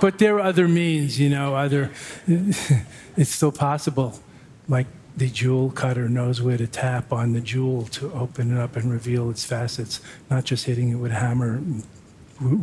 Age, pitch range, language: 50-69, 120-135 Hz, English